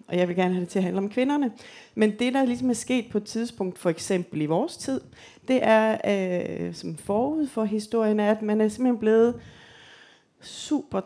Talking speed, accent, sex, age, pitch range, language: 205 wpm, native, female, 30-49, 175-215 Hz, Danish